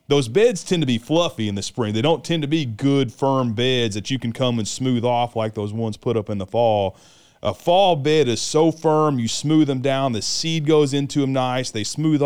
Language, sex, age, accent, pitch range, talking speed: English, male, 30-49, American, 110-145 Hz, 245 wpm